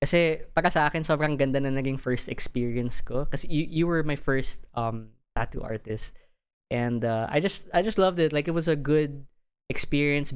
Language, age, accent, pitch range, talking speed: English, 20-39, Filipino, 115-145 Hz, 180 wpm